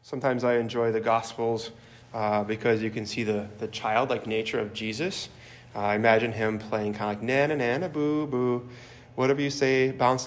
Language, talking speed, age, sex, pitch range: English, 195 wpm, 20-39, male, 110-120 Hz